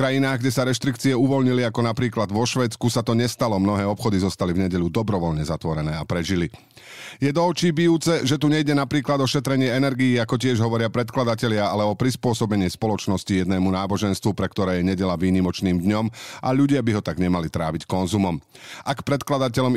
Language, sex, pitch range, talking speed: Slovak, male, 95-125 Hz, 180 wpm